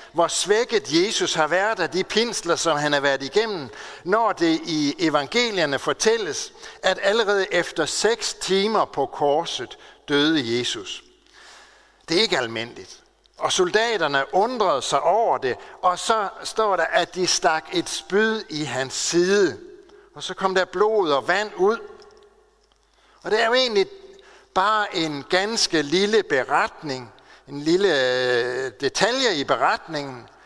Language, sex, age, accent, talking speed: Danish, male, 60-79, native, 140 wpm